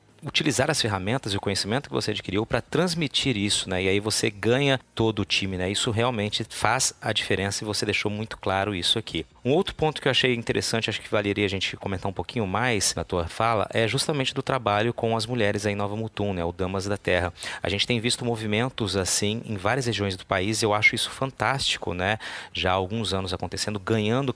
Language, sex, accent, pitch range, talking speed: Portuguese, male, Brazilian, 95-120 Hz, 225 wpm